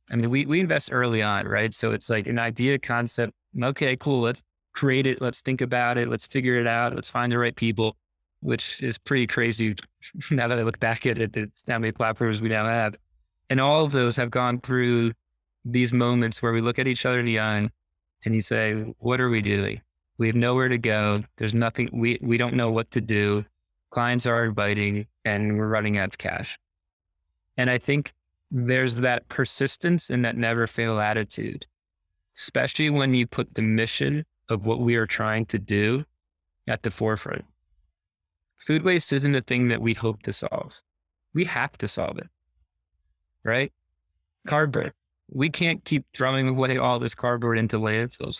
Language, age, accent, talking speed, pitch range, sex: English, 20-39, American, 185 wpm, 105-125 Hz, male